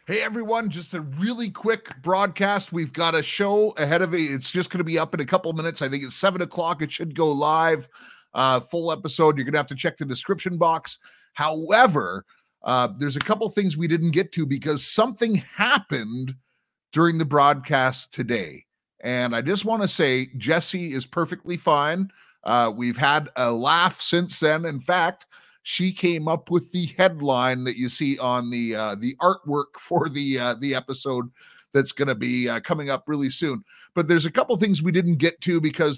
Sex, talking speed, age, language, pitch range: male, 200 wpm, 30-49, English, 130-175 Hz